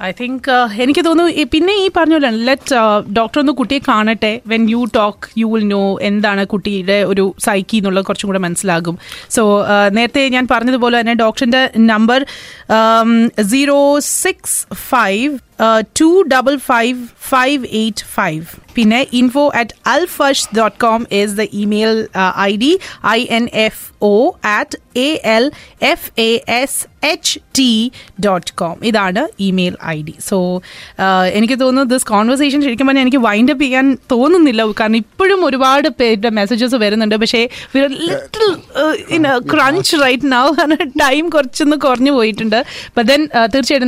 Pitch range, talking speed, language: 215-275 Hz, 115 wpm, Malayalam